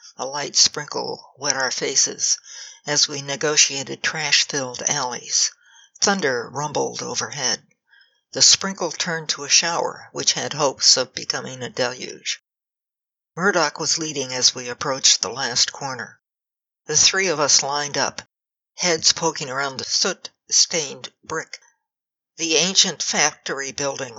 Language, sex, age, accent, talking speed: English, female, 60-79, American, 130 wpm